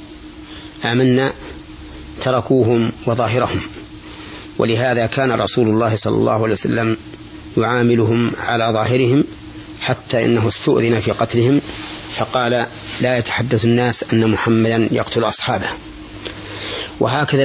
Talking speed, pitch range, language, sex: 95 wpm, 105-120 Hz, Arabic, male